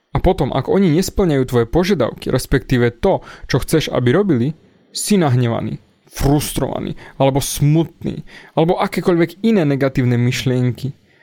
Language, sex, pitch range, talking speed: Slovak, male, 120-155 Hz, 125 wpm